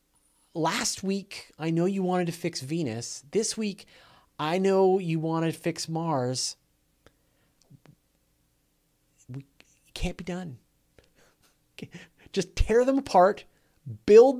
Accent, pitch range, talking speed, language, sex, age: American, 105-155 Hz, 115 wpm, English, male, 30-49